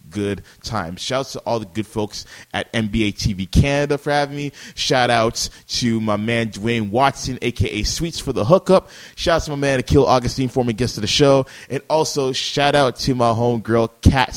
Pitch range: 105-135 Hz